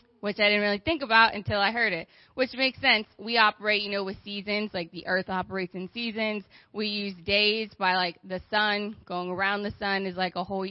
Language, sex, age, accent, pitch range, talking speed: English, female, 20-39, American, 205-245 Hz, 225 wpm